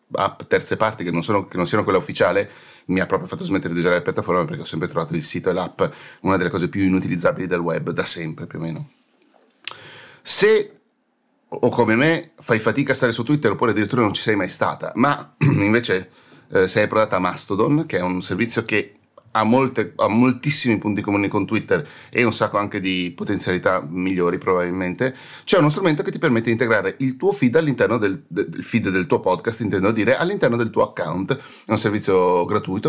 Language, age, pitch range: Italian, 30-49, 100-150 Hz